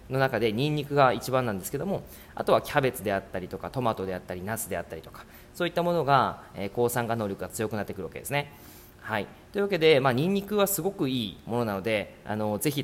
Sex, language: male, Japanese